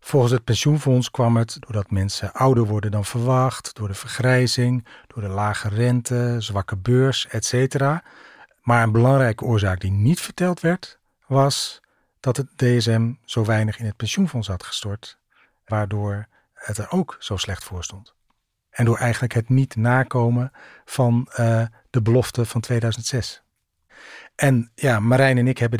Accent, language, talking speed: Dutch, Dutch, 155 wpm